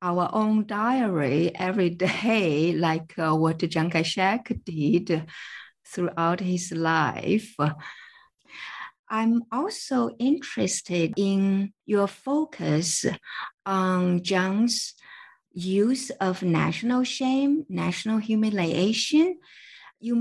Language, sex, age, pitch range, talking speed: English, female, 50-69, 170-230 Hz, 90 wpm